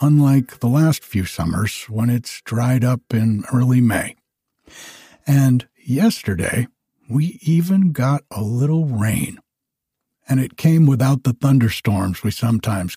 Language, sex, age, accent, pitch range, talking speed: English, male, 60-79, American, 115-145 Hz, 130 wpm